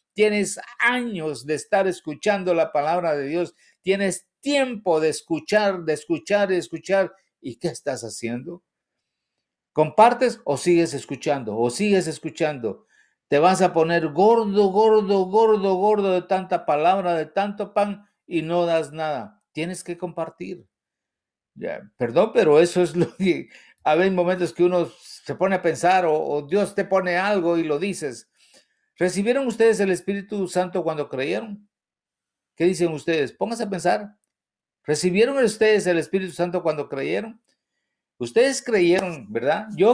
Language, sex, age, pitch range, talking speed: English, male, 50-69, 160-205 Hz, 145 wpm